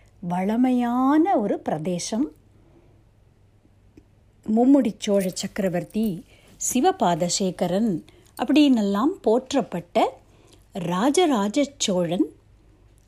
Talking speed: 50 wpm